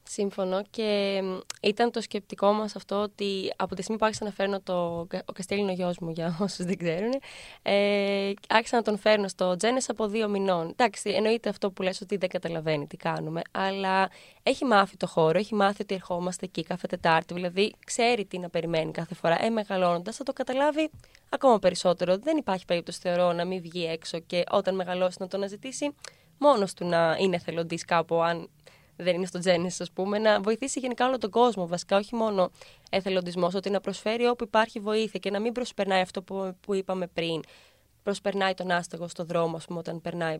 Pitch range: 175-210 Hz